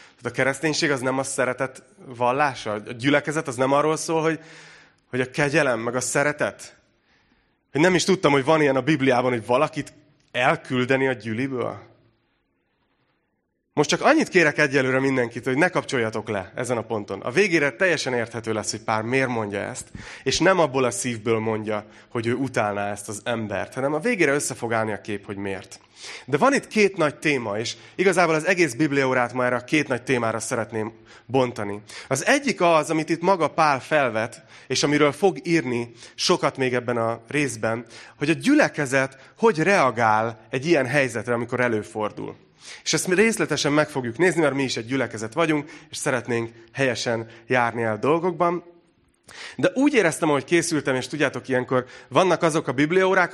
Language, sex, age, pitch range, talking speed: Hungarian, male, 30-49, 115-160 Hz, 175 wpm